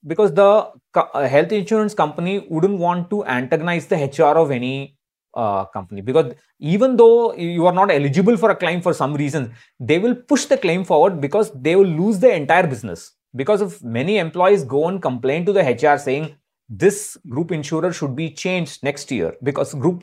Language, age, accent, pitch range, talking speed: English, 30-49, Indian, 145-210 Hz, 185 wpm